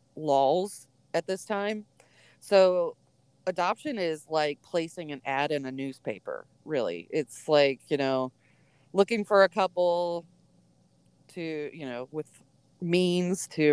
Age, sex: 30-49, female